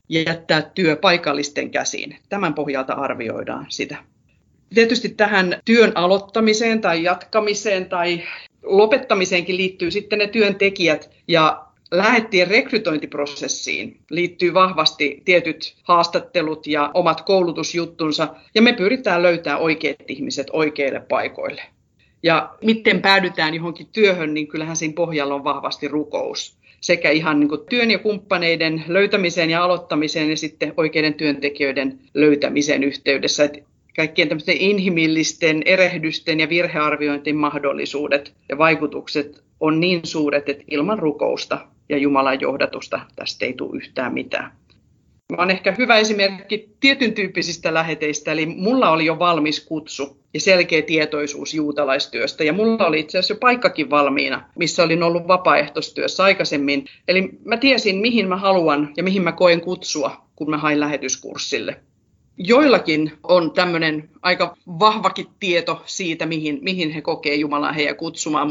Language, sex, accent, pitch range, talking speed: Finnish, female, native, 150-185 Hz, 130 wpm